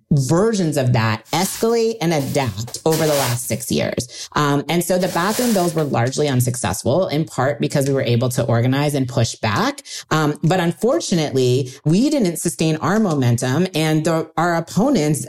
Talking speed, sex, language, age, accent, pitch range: 165 wpm, female, English, 40-59, American, 130-180 Hz